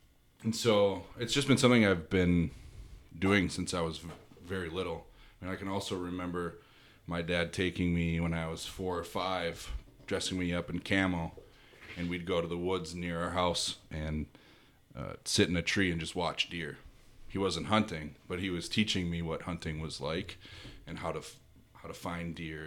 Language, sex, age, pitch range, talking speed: English, male, 30-49, 80-100 Hz, 195 wpm